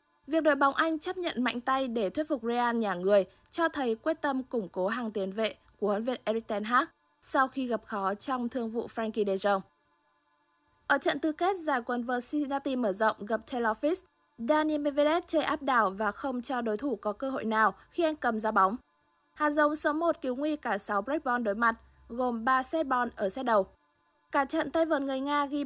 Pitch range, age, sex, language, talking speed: 210-285 Hz, 20-39, female, Vietnamese, 220 wpm